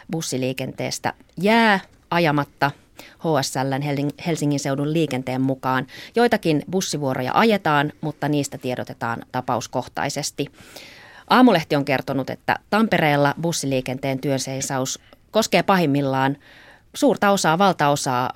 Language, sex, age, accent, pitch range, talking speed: Finnish, female, 30-49, native, 130-165 Hz, 90 wpm